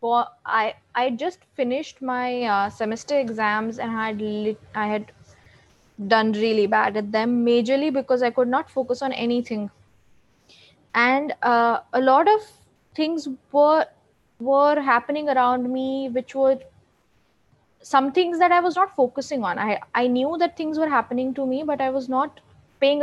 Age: 20-39